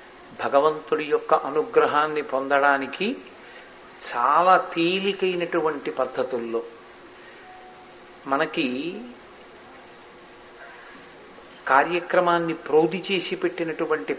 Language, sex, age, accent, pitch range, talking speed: Telugu, male, 50-69, native, 145-180 Hz, 50 wpm